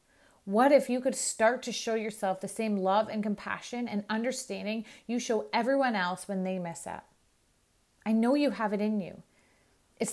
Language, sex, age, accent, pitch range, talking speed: English, female, 30-49, American, 205-245 Hz, 185 wpm